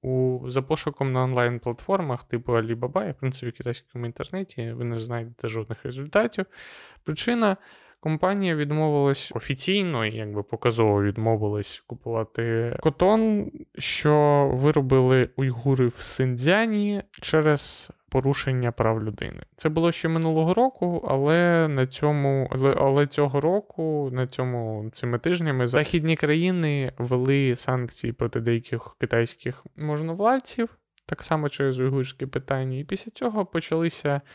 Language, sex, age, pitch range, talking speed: Ukrainian, male, 20-39, 120-155 Hz, 120 wpm